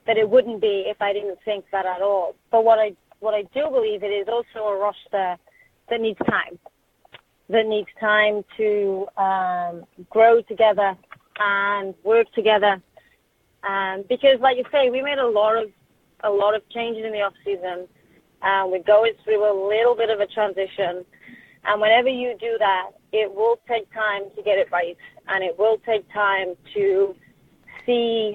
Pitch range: 190-225 Hz